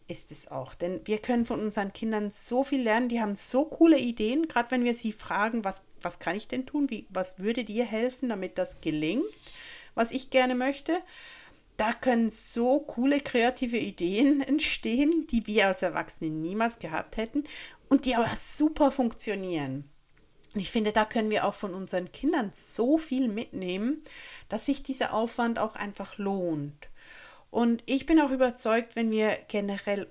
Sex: female